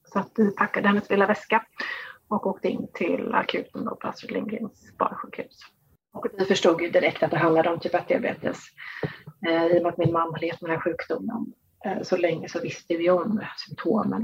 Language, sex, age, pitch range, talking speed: English, female, 30-49, 170-200 Hz, 200 wpm